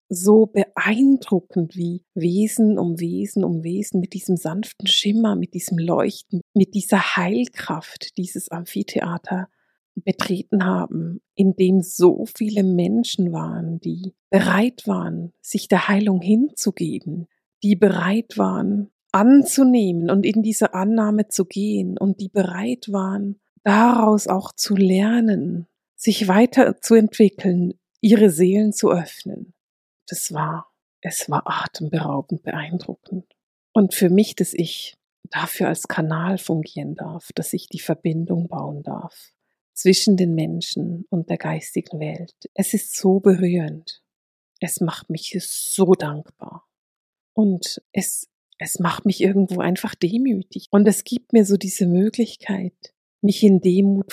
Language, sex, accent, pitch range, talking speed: German, female, German, 175-210 Hz, 125 wpm